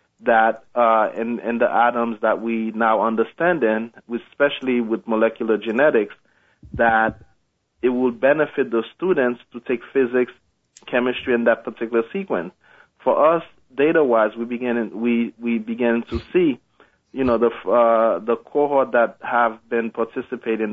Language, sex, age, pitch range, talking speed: English, male, 30-49, 115-125 Hz, 140 wpm